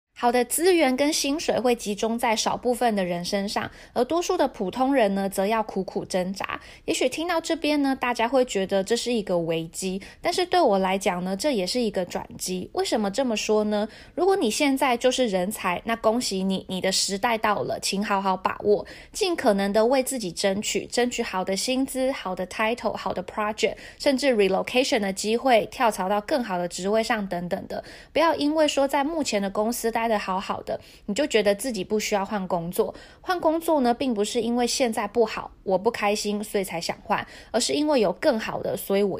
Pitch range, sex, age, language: 195-255 Hz, female, 20-39, Chinese